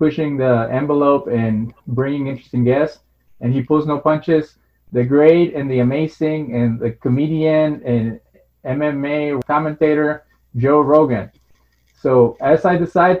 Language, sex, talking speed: English, male, 130 wpm